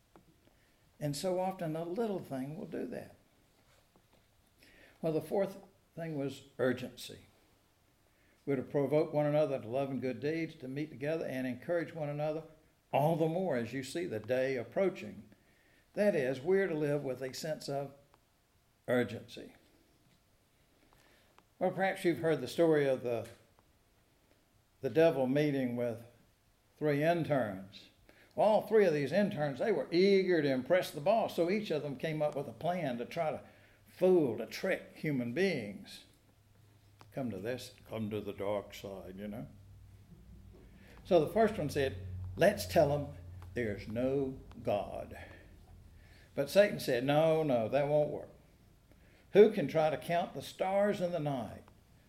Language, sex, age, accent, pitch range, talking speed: English, male, 60-79, American, 105-160 Hz, 155 wpm